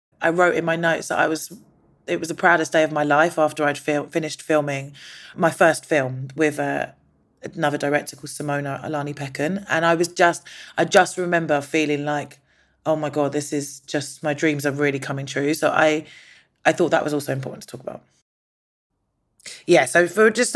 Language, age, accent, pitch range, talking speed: English, 30-49, British, 150-190 Hz, 200 wpm